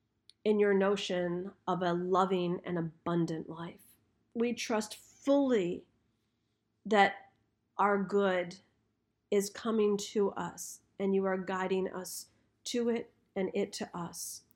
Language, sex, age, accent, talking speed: English, female, 40-59, American, 125 wpm